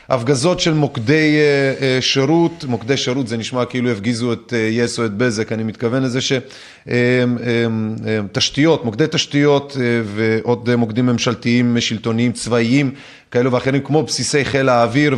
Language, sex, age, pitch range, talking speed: Hebrew, male, 30-49, 120-145 Hz, 125 wpm